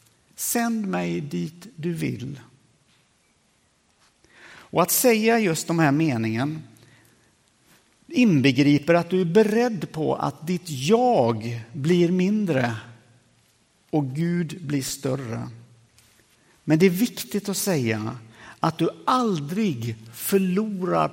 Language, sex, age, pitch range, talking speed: Swedish, male, 60-79, 120-190 Hz, 105 wpm